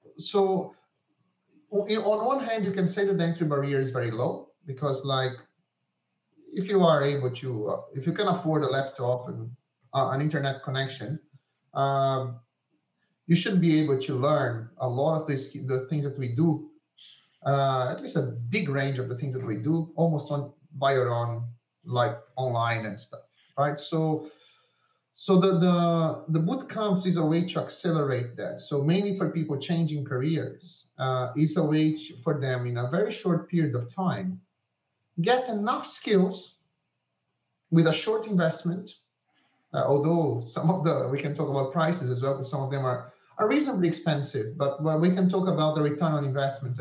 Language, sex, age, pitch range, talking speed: English, male, 30-49, 135-180 Hz, 180 wpm